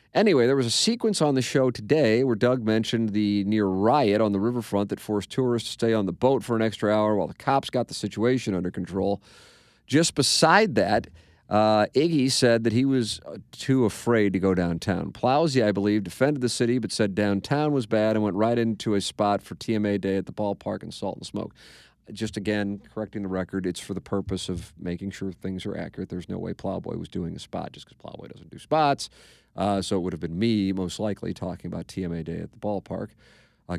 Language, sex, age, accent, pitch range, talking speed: English, male, 40-59, American, 95-120 Hz, 220 wpm